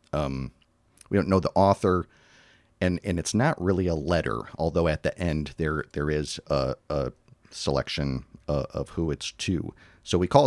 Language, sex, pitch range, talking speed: English, male, 75-90 Hz, 180 wpm